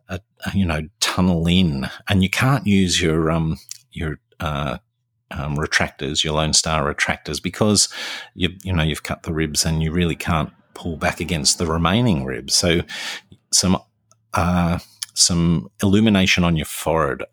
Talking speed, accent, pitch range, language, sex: 160 wpm, Australian, 75-95 Hz, English, male